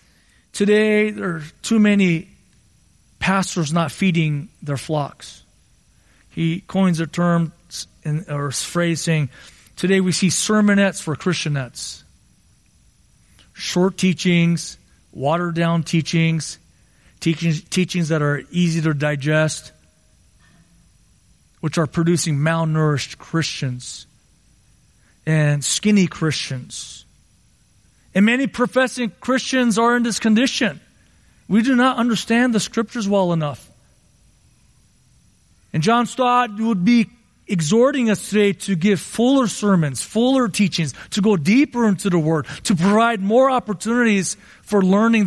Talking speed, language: 115 wpm, English